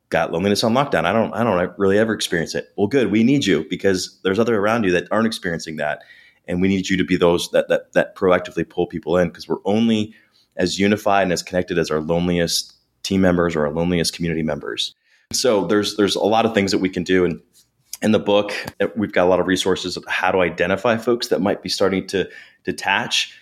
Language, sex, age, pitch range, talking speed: English, male, 20-39, 90-100 Hz, 230 wpm